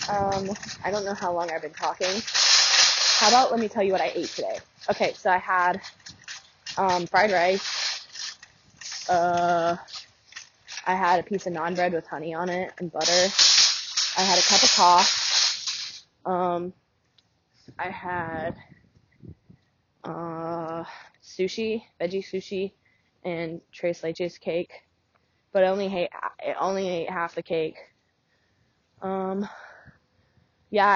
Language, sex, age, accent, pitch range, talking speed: English, female, 20-39, American, 175-205 Hz, 135 wpm